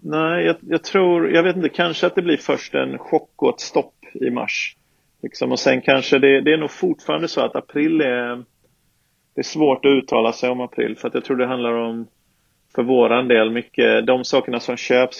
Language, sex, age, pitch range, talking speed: Swedish, male, 30-49, 110-130 Hz, 215 wpm